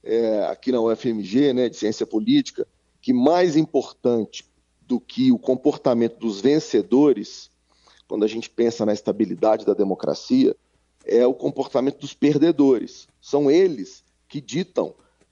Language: Portuguese